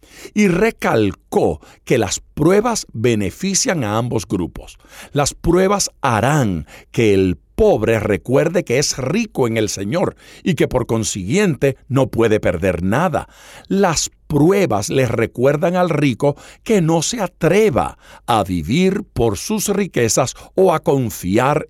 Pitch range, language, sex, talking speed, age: 115-180 Hz, Spanish, male, 135 wpm, 60-79